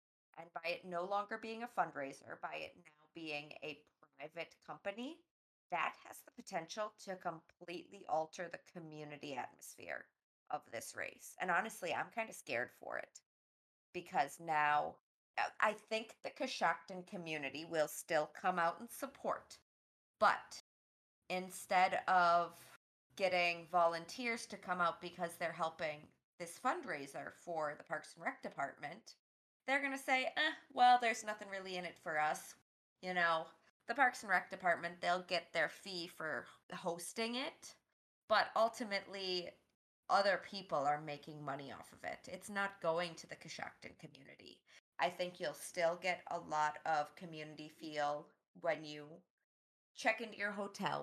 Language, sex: English, female